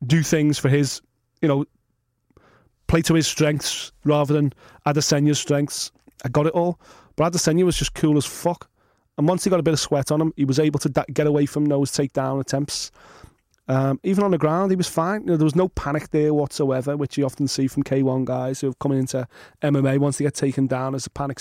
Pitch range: 140-165 Hz